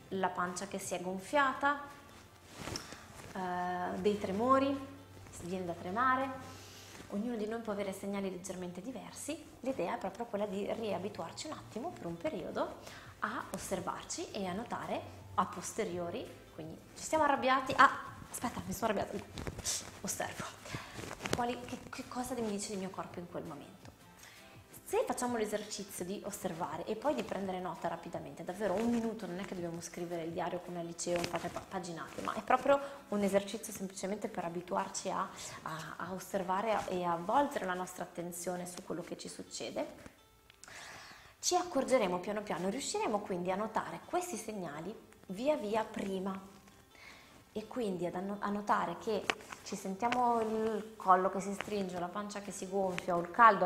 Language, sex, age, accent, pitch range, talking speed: Italian, female, 20-39, native, 180-240 Hz, 160 wpm